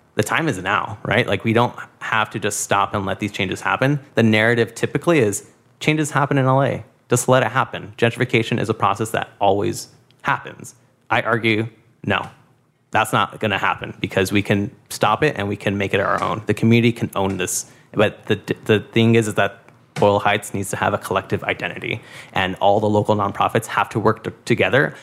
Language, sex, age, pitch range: English, male, 30-49, 100-115 Hz